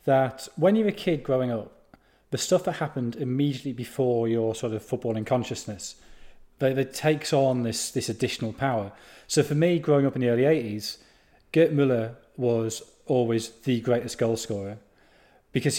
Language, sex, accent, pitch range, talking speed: English, male, British, 115-140 Hz, 165 wpm